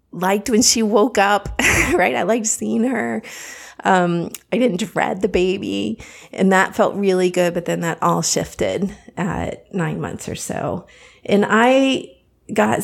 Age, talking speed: 30-49, 160 wpm